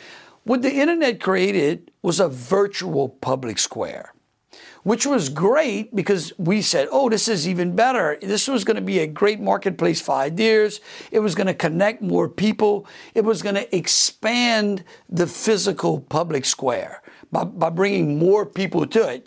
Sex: male